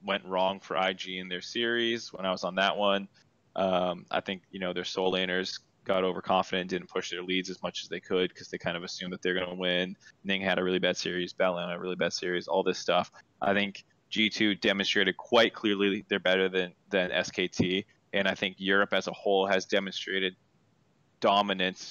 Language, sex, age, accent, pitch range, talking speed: English, male, 20-39, American, 95-105 Hz, 220 wpm